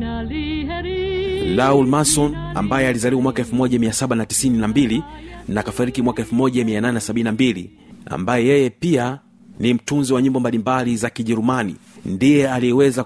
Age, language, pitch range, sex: 40-59, Swahili, 110-130 Hz, male